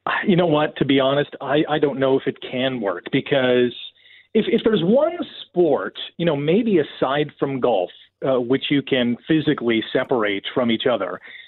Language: English